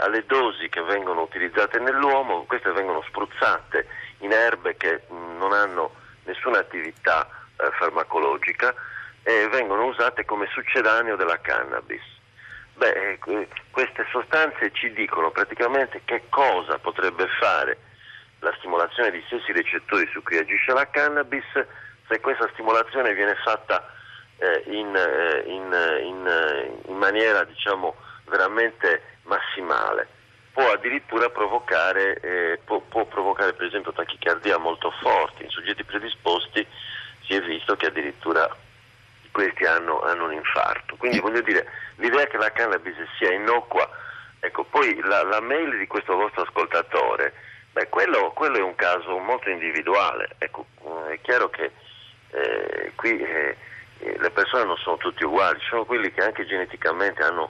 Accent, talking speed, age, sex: native, 135 wpm, 40-59, male